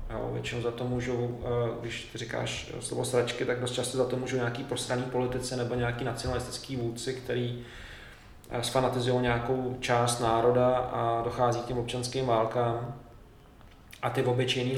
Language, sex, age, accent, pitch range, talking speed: Czech, male, 20-39, native, 120-135 Hz, 145 wpm